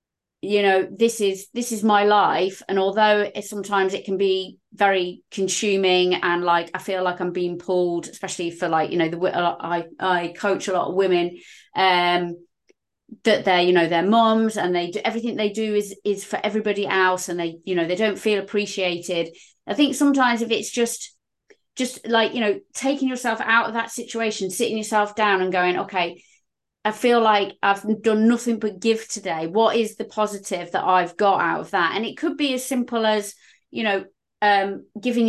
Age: 30-49